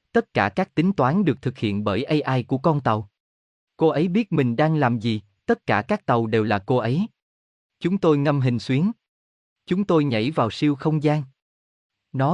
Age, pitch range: 20-39, 115-160 Hz